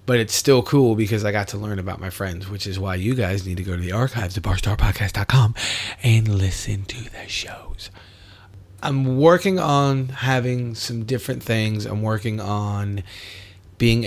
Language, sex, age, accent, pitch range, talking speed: English, male, 30-49, American, 95-115 Hz, 175 wpm